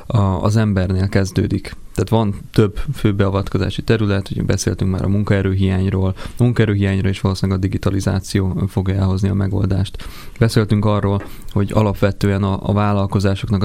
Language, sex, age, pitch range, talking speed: Hungarian, male, 20-39, 95-105 Hz, 130 wpm